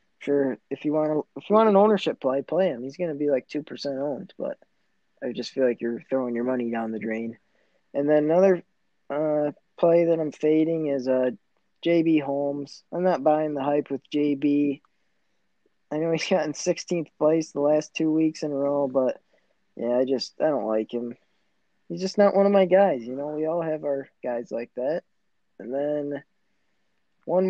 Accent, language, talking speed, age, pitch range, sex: American, English, 200 wpm, 20-39, 140-175 Hz, male